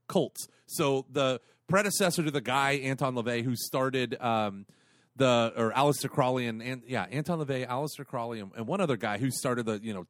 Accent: American